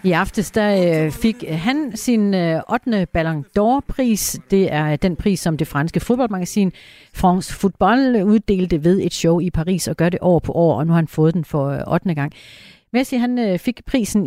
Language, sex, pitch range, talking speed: Danish, female, 155-210 Hz, 185 wpm